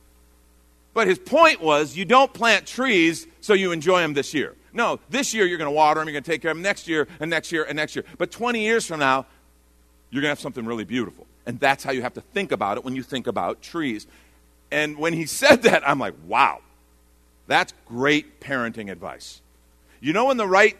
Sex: male